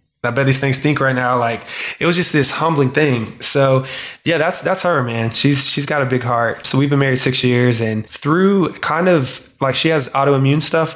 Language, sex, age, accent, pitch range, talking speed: English, male, 20-39, American, 120-135 Hz, 225 wpm